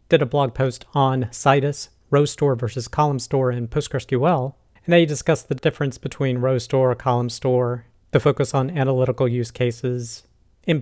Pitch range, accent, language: 125-145 Hz, American, English